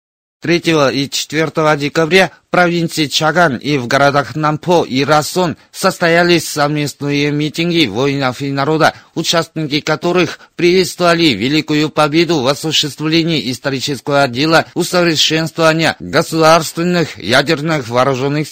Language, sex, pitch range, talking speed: Russian, male, 140-165 Hz, 105 wpm